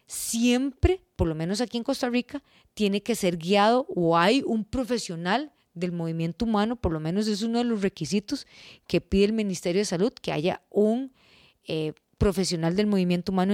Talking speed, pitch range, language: 180 wpm, 180-245 Hz, Spanish